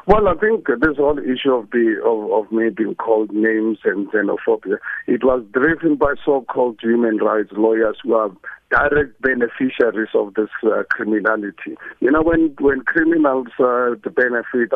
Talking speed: 165 wpm